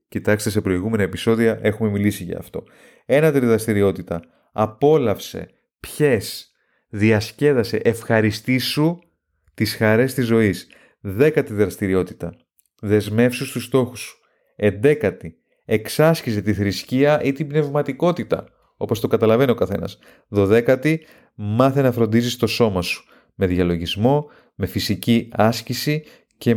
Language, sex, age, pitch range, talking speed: Greek, male, 30-49, 105-125 Hz, 115 wpm